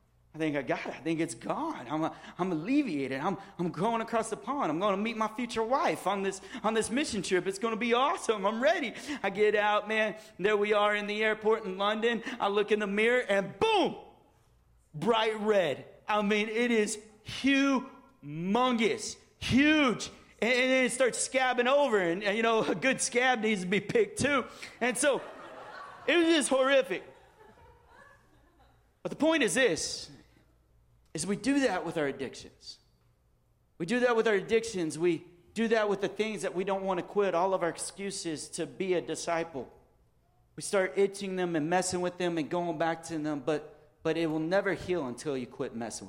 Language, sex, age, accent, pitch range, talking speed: English, male, 40-59, American, 165-225 Hz, 200 wpm